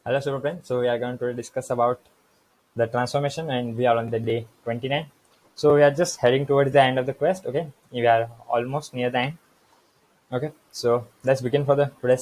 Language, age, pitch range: English, 20-39, 120-140 Hz